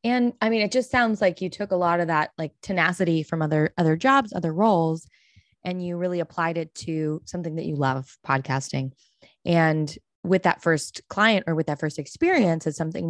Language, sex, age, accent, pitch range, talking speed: English, female, 20-39, American, 155-195 Hz, 200 wpm